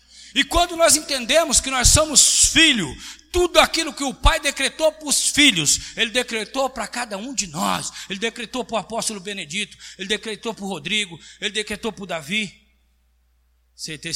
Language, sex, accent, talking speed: Portuguese, male, Brazilian, 175 wpm